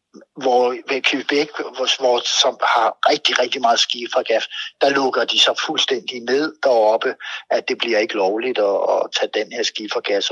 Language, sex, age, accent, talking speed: Danish, male, 60-79, native, 170 wpm